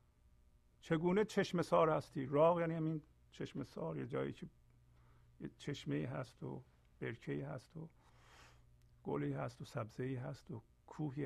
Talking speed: 140 wpm